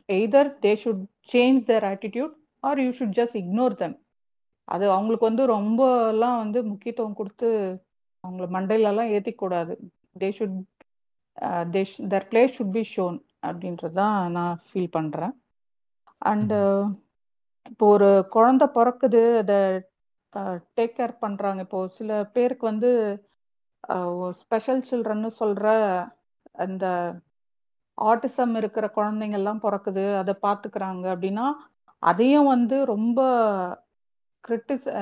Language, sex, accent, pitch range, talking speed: Tamil, female, native, 200-245 Hz, 115 wpm